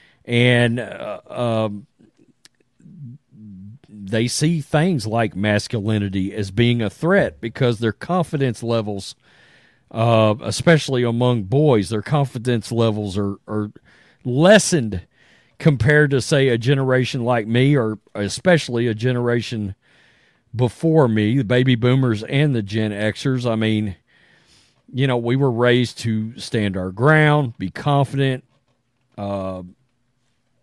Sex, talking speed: male, 120 wpm